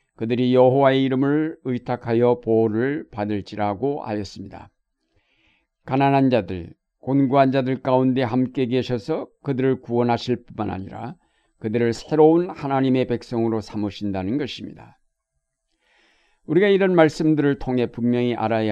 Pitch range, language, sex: 120-145 Hz, Korean, male